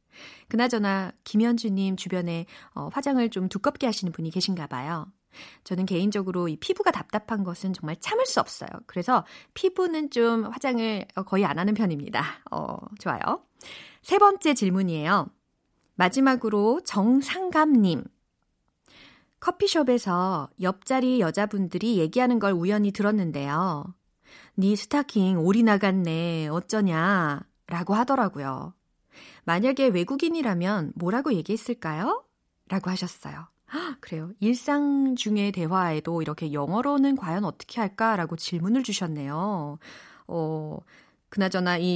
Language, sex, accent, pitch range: Korean, female, native, 170-245 Hz